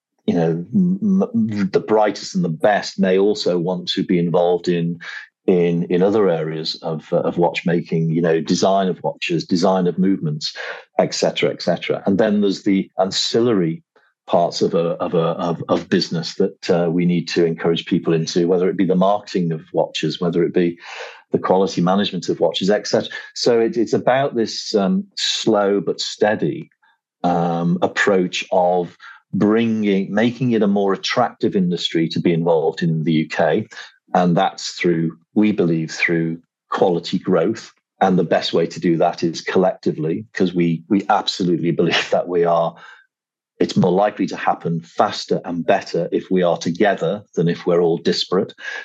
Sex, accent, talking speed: male, British, 170 wpm